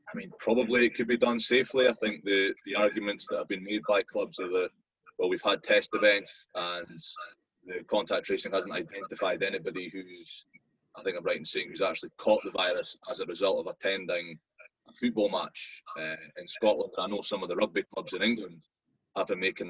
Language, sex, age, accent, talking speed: English, male, 20-39, British, 210 wpm